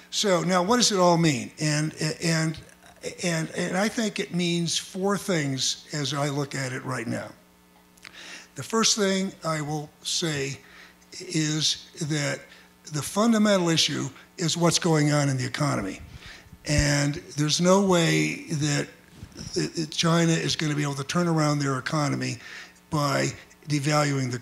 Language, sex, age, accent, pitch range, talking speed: English, male, 60-79, American, 145-175 Hz, 145 wpm